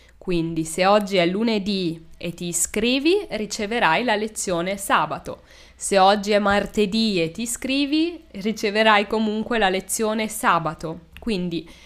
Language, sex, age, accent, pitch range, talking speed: Italian, female, 20-39, native, 175-215 Hz, 125 wpm